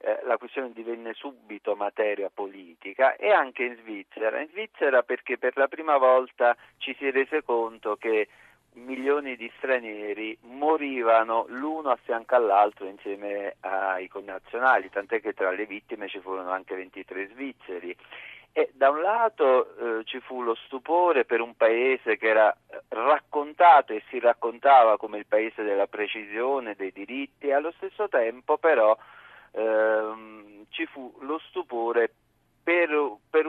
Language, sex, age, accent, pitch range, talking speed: Italian, male, 40-59, native, 110-155 Hz, 140 wpm